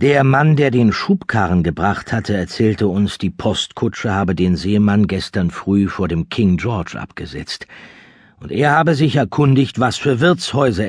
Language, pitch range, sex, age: German, 95-140 Hz, male, 50-69